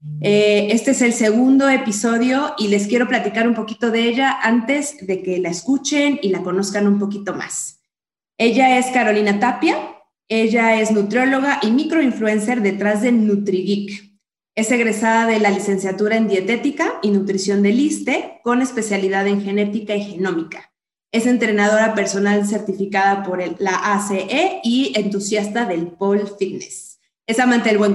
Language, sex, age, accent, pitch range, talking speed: Spanish, female, 20-39, Mexican, 200-245 Hz, 150 wpm